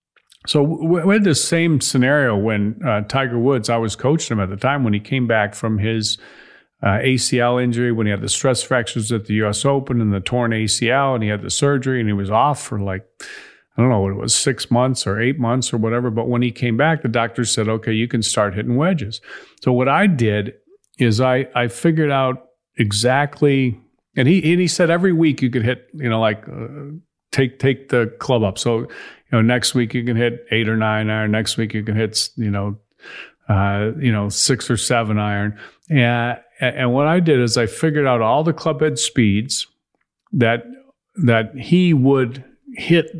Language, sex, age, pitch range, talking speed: English, male, 50-69, 110-140 Hz, 210 wpm